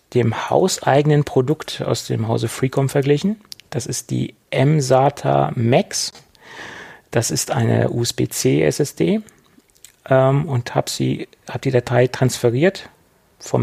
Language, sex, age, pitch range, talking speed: German, male, 40-59, 115-135 Hz, 100 wpm